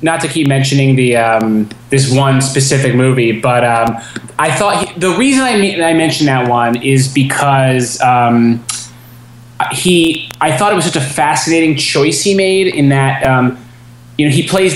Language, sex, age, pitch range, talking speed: English, male, 20-39, 125-155 Hz, 175 wpm